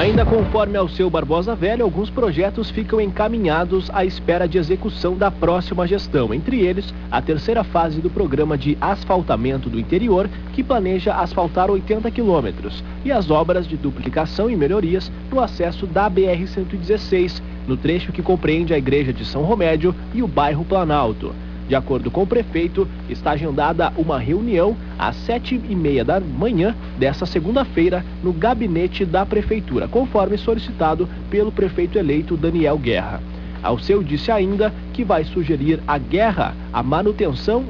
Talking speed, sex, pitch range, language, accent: 150 wpm, male, 150-205 Hz, Portuguese, Brazilian